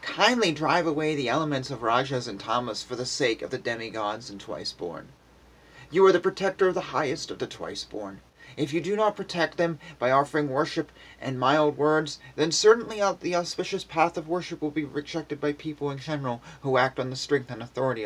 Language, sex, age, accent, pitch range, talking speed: English, male, 30-49, American, 115-155 Hz, 200 wpm